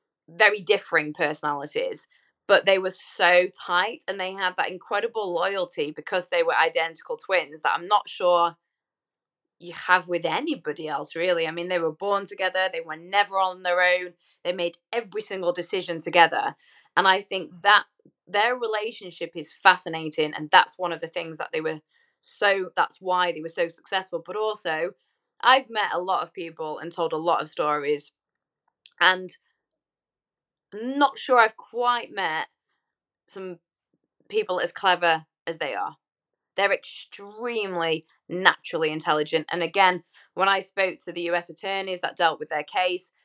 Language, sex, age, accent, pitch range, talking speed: English, female, 20-39, British, 170-205 Hz, 160 wpm